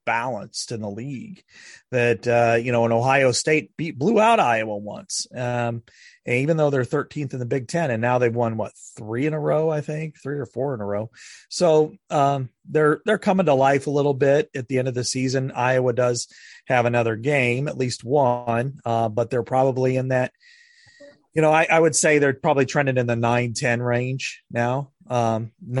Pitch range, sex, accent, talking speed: 115-145 Hz, male, American, 205 wpm